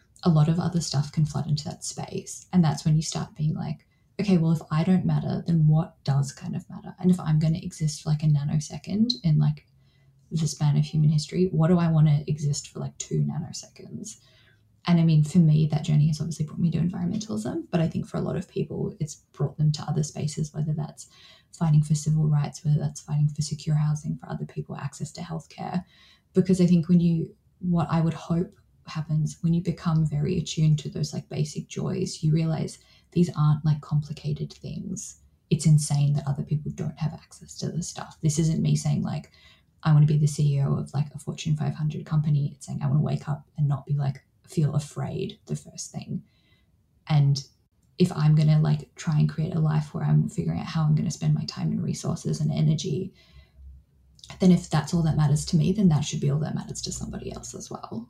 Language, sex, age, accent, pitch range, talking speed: English, female, 10-29, Australian, 150-170 Hz, 225 wpm